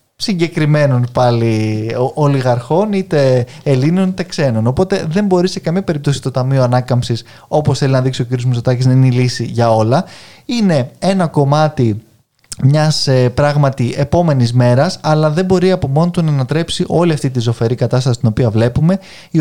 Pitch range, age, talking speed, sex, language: 125-160 Hz, 20-39, 165 wpm, male, Greek